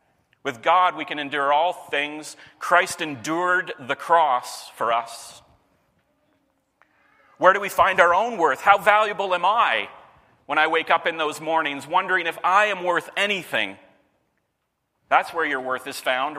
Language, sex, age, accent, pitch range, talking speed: English, male, 40-59, American, 145-195 Hz, 155 wpm